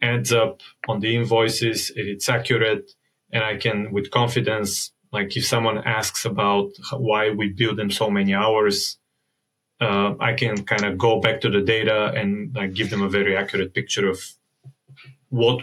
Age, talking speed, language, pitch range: 30-49, 175 wpm, English, 110-130 Hz